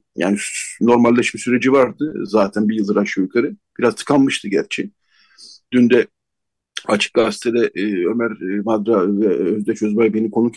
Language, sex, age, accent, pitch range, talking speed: Turkish, male, 50-69, native, 110-135 Hz, 130 wpm